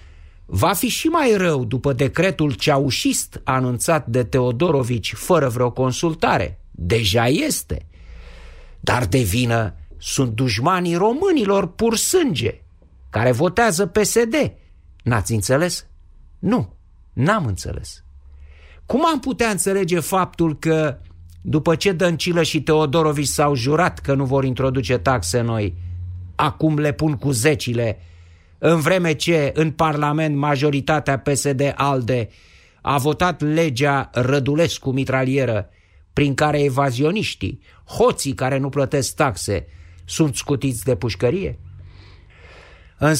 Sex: male